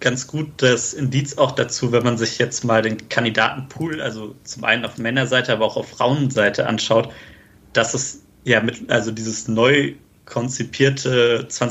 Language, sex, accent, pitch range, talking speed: German, male, German, 115-145 Hz, 160 wpm